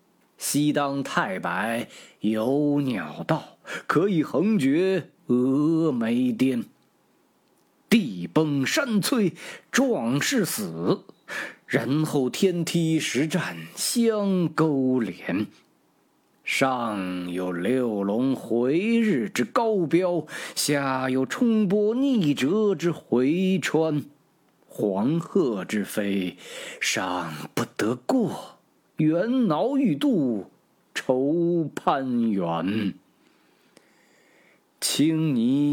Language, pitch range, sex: Chinese, 125-190 Hz, male